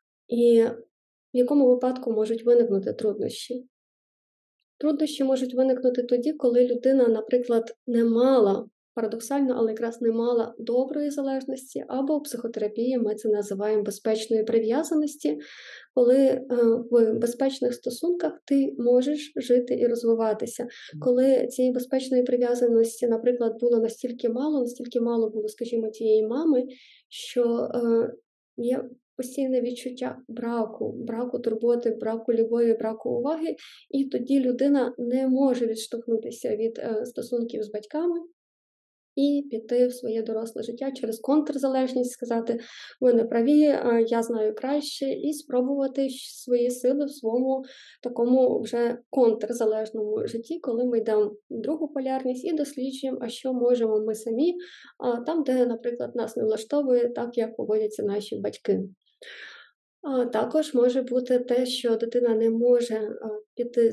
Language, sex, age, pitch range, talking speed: Ukrainian, female, 20-39, 230-265 Hz, 130 wpm